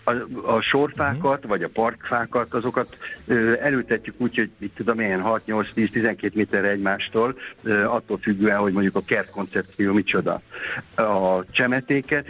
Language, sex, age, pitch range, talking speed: Hungarian, male, 60-79, 100-120 Hz, 140 wpm